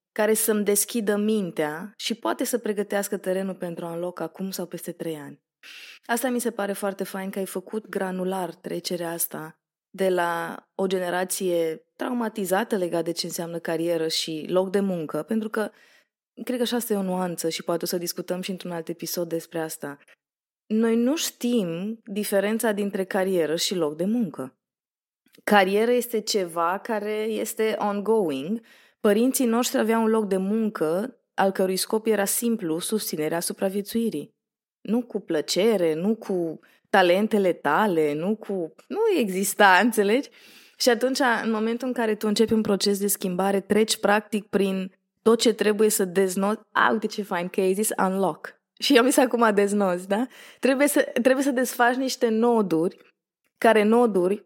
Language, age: Romanian, 20-39